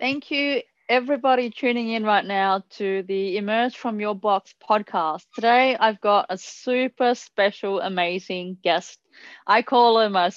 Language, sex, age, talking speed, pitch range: English, female, 20-39, 150 wpm, 185-235 Hz